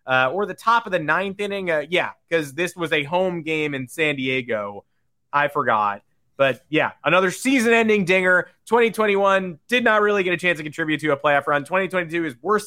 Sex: male